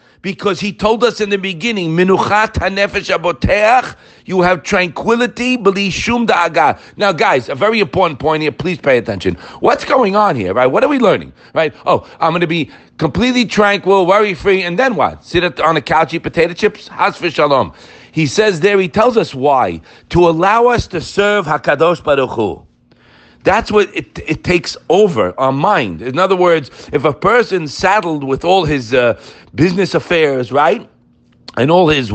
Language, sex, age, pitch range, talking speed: English, male, 50-69, 150-200 Hz, 175 wpm